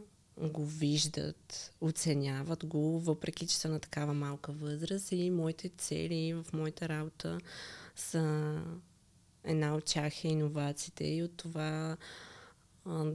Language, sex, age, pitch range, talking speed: Bulgarian, female, 20-39, 150-165 Hz, 125 wpm